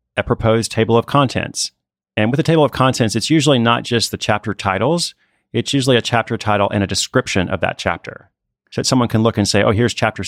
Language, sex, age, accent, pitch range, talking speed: English, male, 30-49, American, 100-125 Hz, 220 wpm